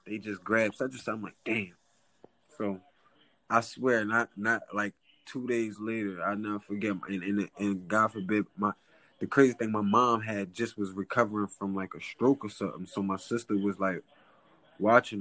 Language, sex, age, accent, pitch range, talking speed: English, male, 20-39, American, 100-120 Hz, 195 wpm